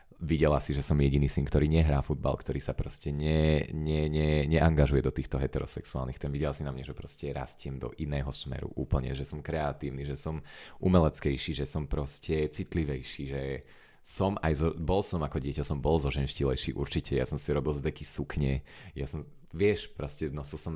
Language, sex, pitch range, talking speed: Slovak, male, 70-80 Hz, 190 wpm